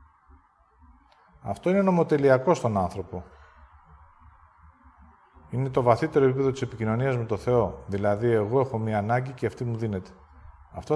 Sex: male